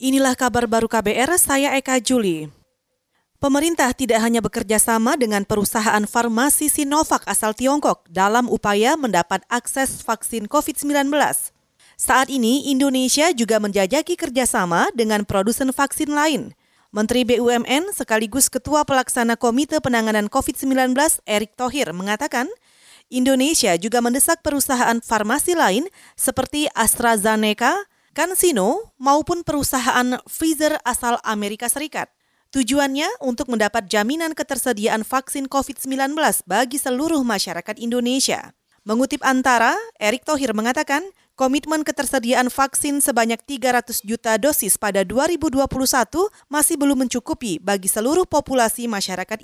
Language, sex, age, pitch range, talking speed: Indonesian, female, 30-49, 225-285 Hz, 110 wpm